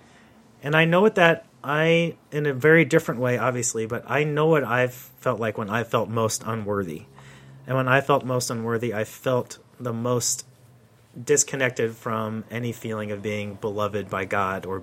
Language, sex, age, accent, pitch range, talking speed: English, male, 30-49, American, 105-130 Hz, 180 wpm